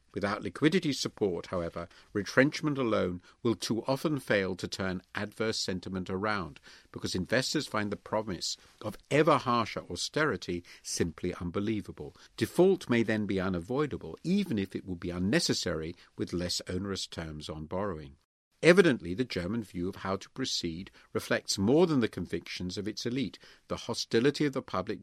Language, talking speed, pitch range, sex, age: English, 155 wpm, 90-130 Hz, male, 50-69